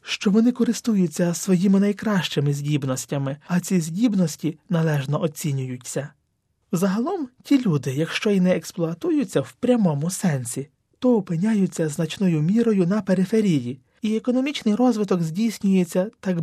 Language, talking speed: Ukrainian, 115 wpm